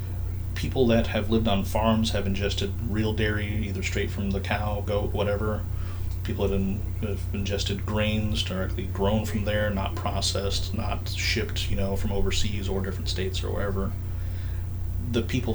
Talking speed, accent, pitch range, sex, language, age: 160 wpm, American, 90-100 Hz, male, English, 30-49